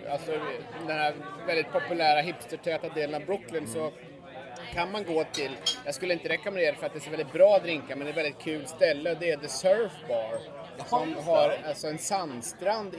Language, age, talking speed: Swedish, 30-49, 205 wpm